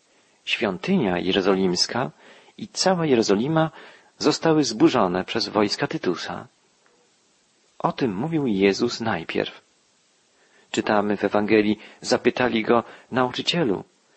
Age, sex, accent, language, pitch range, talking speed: 40-59, male, native, Polish, 105-140 Hz, 90 wpm